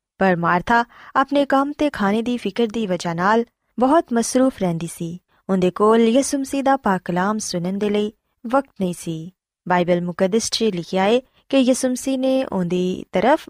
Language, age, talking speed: Punjabi, 20-39, 155 wpm